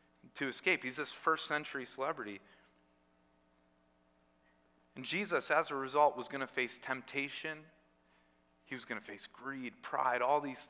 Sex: male